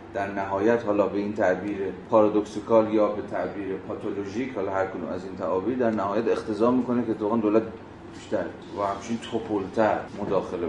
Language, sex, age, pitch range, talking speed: Persian, male, 30-49, 100-115 Hz, 165 wpm